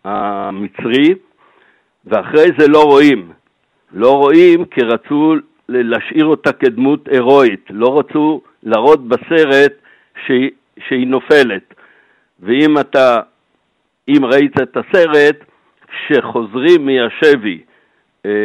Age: 60-79